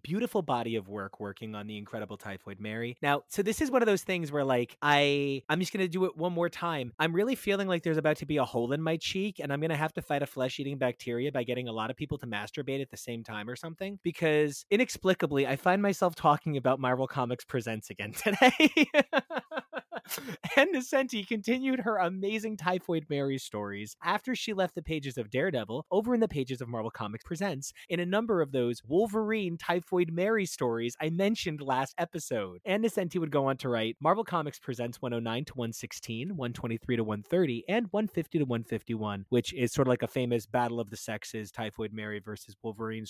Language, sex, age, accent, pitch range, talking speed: English, male, 30-49, American, 120-180 Hz, 205 wpm